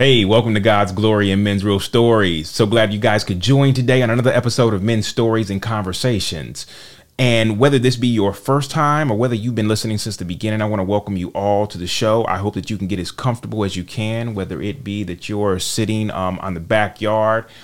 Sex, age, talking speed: male, 30-49, 235 wpm